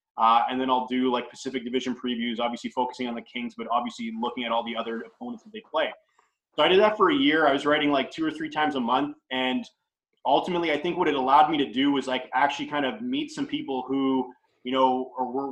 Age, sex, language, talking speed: 20-39, male, English, 250 wpm